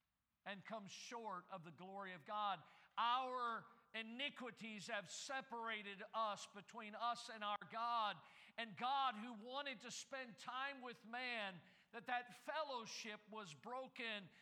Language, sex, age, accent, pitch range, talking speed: English, male, 50-69, American, 200-245 Hz, 135 wpm